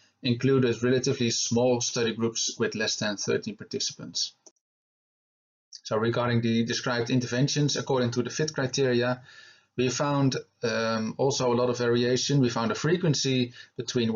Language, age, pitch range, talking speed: English, 30-49, 115-135 Hz, 140 wpm